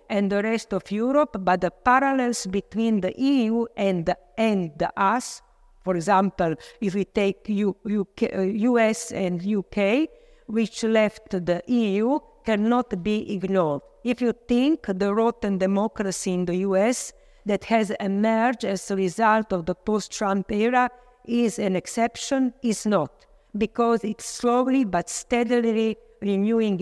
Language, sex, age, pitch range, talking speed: Slovak, female, 50-69, 190-235 Hz, 135 wpm